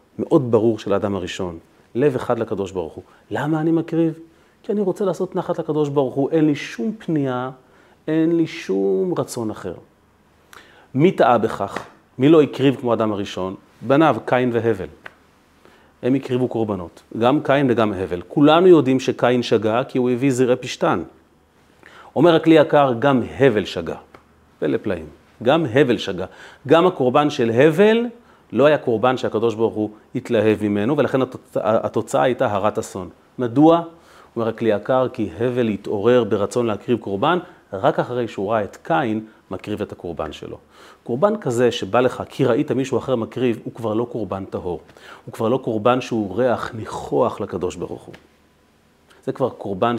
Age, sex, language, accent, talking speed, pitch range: 40-59, male, Hebrew, native, 160 wpm, 110-150 Hz